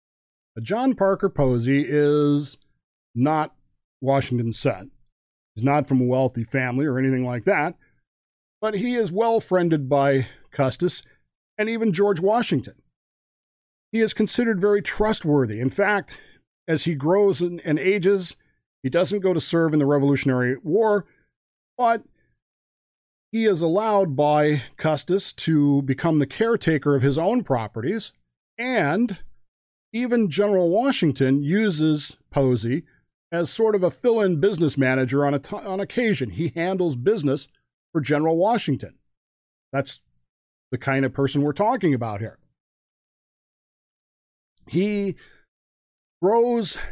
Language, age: English, 40-59